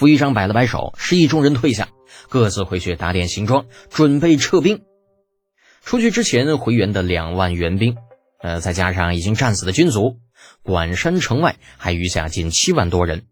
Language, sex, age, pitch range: Chinese, male, 20-39, 90-130 Hz